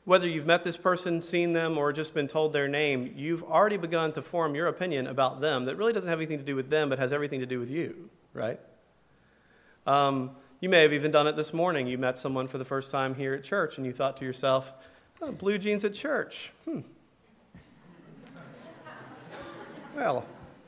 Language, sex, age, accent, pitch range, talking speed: English, male, 40-59, American, 140-190 Hz, 200 wpm